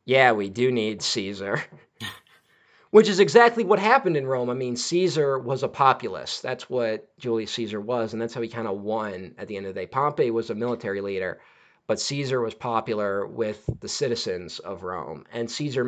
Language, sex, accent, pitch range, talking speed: English, male, American, 110-145 Hz, 195 wpm